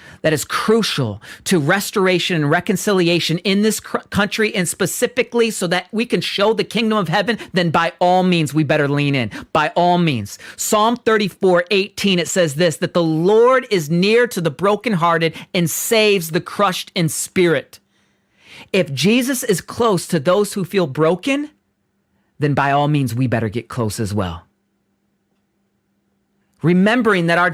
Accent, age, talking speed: American, 40-59, 160 wpm